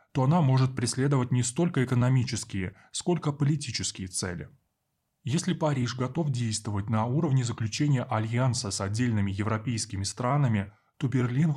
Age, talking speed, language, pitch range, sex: 20-39, 125 wpm, Russian, 110-135 Hz, male